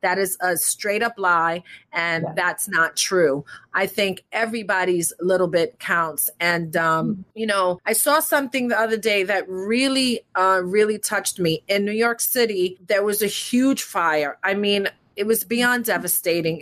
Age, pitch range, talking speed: 30-49, 185-230 Hz, 170 wpm